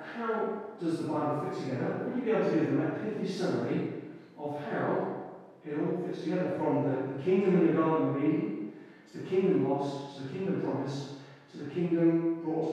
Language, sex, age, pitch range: English, male, 40-59, 135-160 Hz